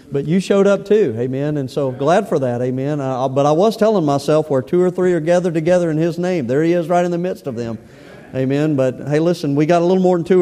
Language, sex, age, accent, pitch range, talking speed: English, male, 40-59, American, 140-170 Hz, 275 wpm